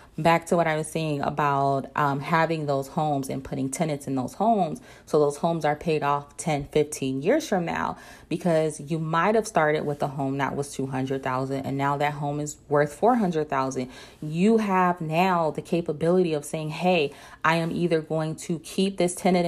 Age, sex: 30-49, female